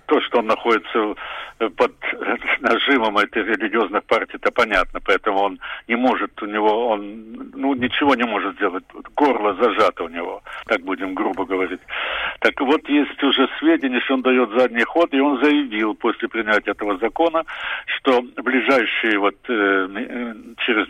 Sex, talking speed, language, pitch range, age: male, 150 wpm, English, 115-155 Hz, 70-89